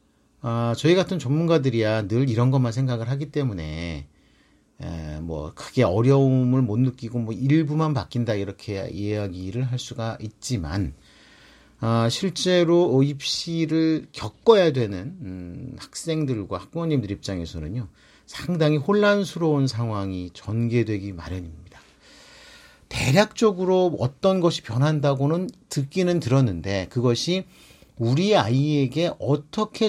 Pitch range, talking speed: 110-160 Hz, 95 wpm